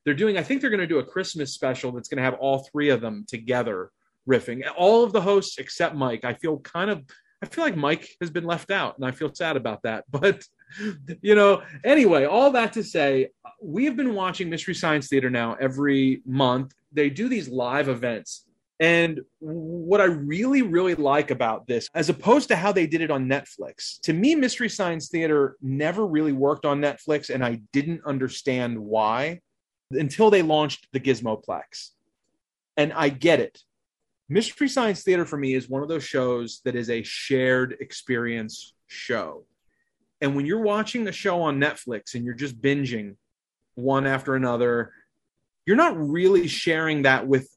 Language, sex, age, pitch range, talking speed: English, male, 30-49, 130-185 Hz, 185 wpm